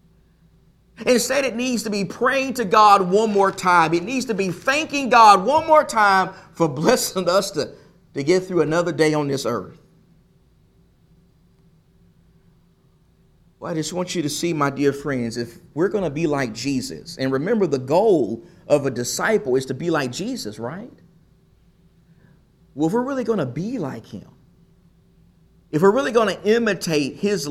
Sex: male